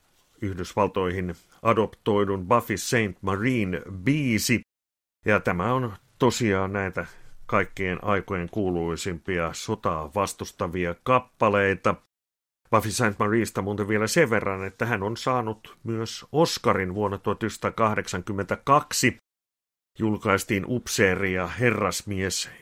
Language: Finnish